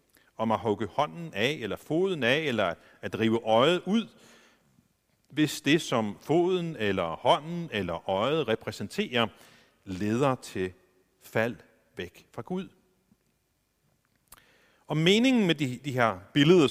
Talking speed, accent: 125 wpm, native